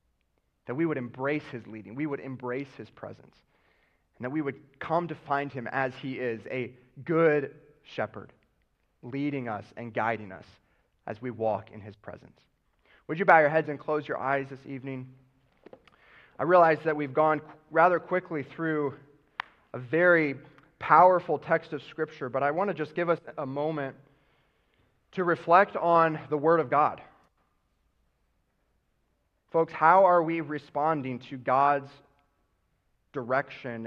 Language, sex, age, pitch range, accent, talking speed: English, male, 30-49, 130-160 Hz, American, 150 wpm